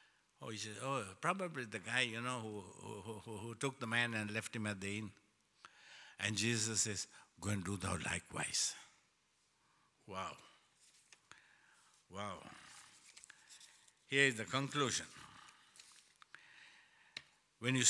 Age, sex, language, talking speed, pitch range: 60-79, male, English, 125 wpm, 105-135 Hz